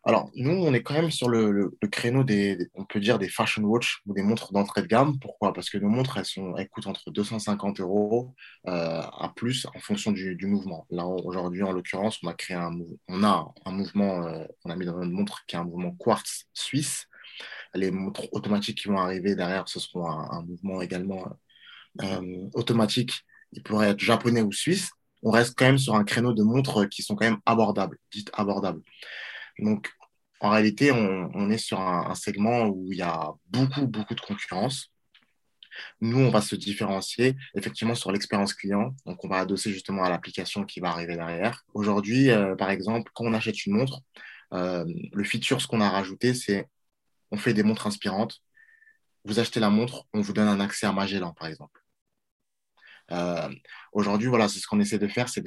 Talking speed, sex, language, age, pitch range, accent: 205 wpm, male, French, 20-39, 95-115 Hz, French